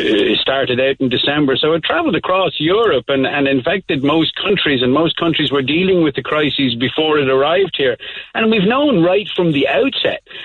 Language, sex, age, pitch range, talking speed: English, male, 60-79, 125-160 Hz, 195 wpm